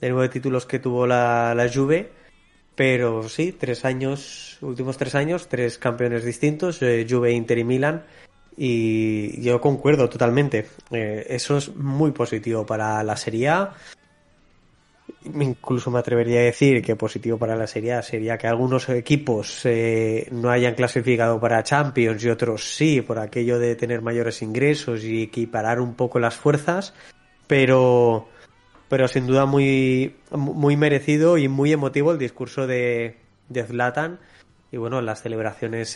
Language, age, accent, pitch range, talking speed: Spanish, 20-39, Spanish, 115-130 Hz, 150 wpm